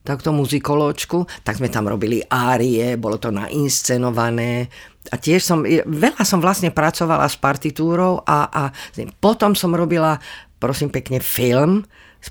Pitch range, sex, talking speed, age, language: 130-180 Hz, female, 140 wpm, 50-69, Slovak